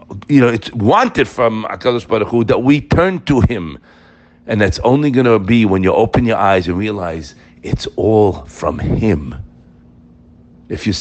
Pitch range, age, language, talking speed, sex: 95-125 Hz, 60-79, English, 165 wpm, male